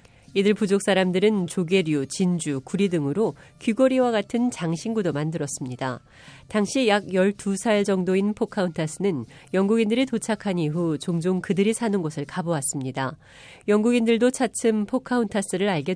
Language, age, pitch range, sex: Korean, 40-59, 155-215 Hz, female